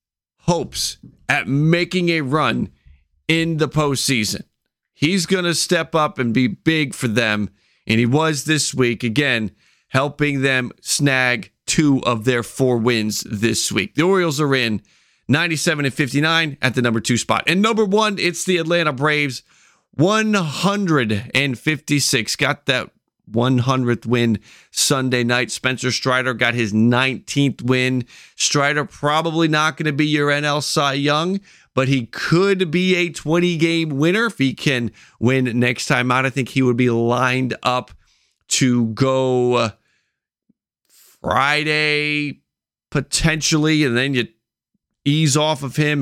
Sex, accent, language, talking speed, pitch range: male, American, English, 140 wpm, 125-155 Hz